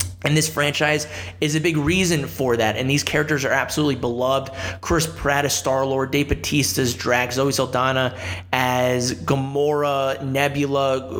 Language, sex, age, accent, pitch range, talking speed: English, male, 20-39, American, 120-150 Hz, 150 wpm